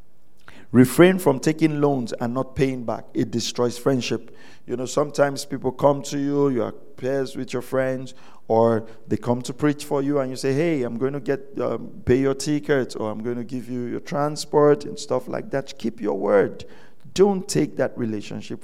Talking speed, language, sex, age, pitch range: 200 wpm, English, male, 50-69, 115-140 Hz